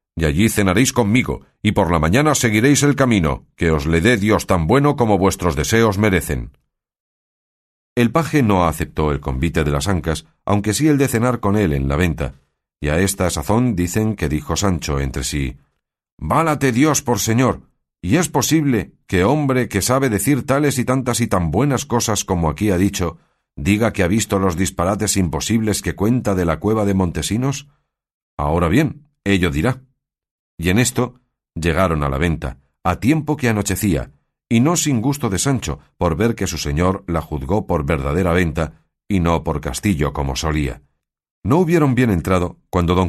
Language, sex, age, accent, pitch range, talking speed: Spanish, male, 50-69, Spanish, 80-120 Hz, 180 wpm